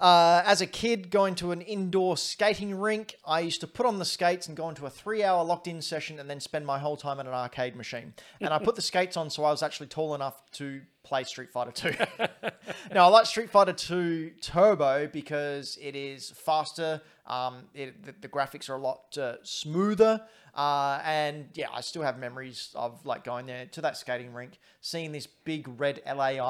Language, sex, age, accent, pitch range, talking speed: English, male, 30-49, Australian, 130-160 Hz, 205 wpm